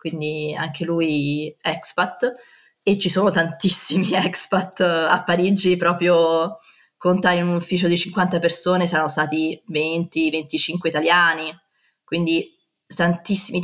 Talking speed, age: 110 wpm, 20-39